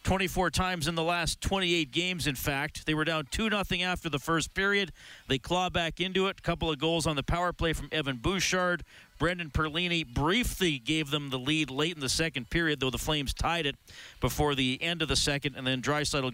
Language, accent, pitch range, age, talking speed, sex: English, American, 140-180 Hz, 40-59, 220 wpm, male